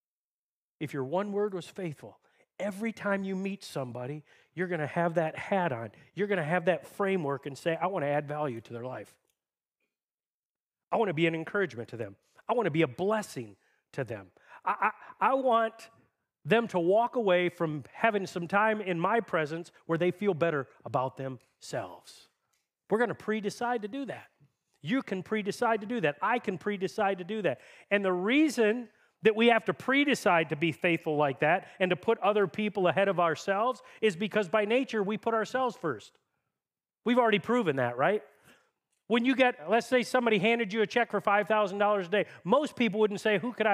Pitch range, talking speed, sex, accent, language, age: 175-220 Hz, 200 wpm, male, American, English, 40-59